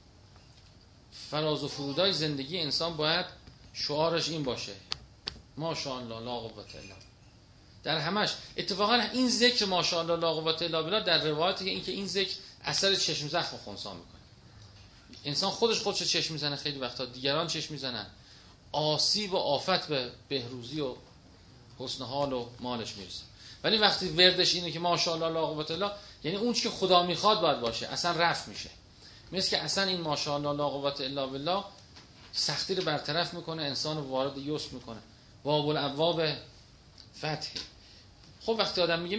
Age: 40-59